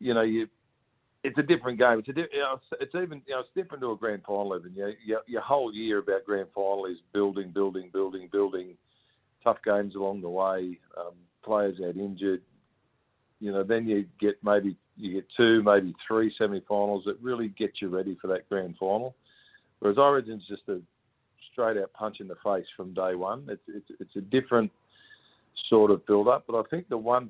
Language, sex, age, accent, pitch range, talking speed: English, male, 50-69, Australian, 95-115 Hz, 205 wpm